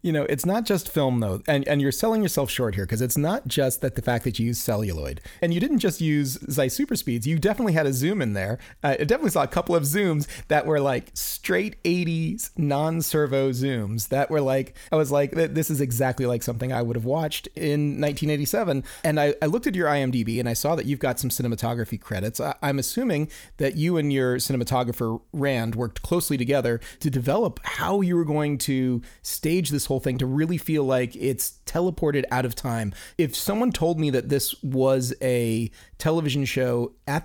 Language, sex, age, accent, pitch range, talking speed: English, male, 30-49, American, 120-155 Hz, 210 wpm